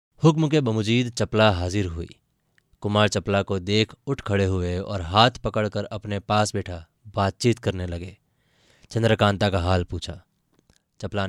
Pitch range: 95-120 Hz